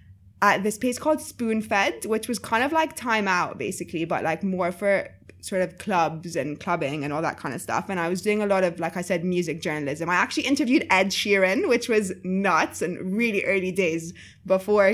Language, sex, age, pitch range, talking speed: English, female, 20-39, 175-205 Hz, 215 wpm